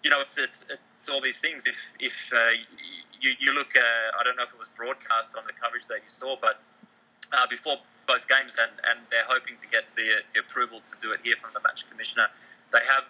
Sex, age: male, 20-39